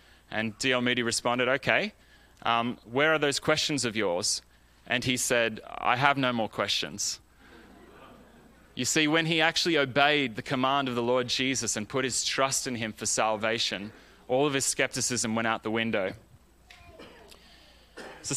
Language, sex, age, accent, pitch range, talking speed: English, male, 20-39, Australian, 120-145 Hz, 160 wpm